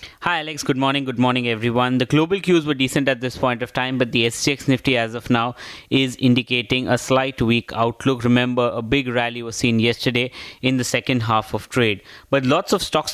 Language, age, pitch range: English, 20-39, 120-145 Hz